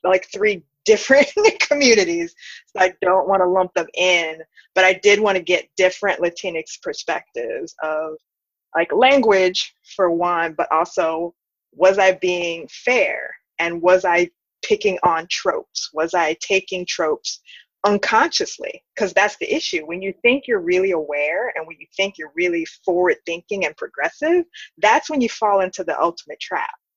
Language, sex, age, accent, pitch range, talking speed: English, female, 20-39, American, 175-230 Hz, 160 wpm